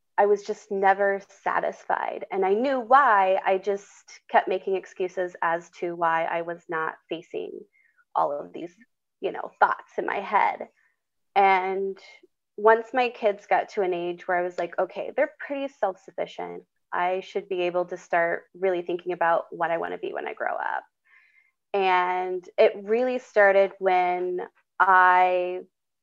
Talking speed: 160 wpm